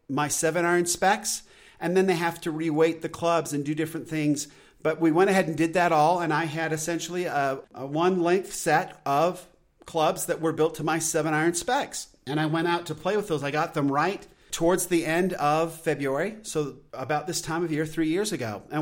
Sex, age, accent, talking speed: male, 40-59, American, 225 wpm